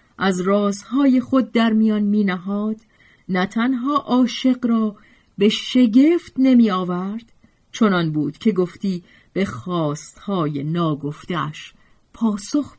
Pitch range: 155-240 Hz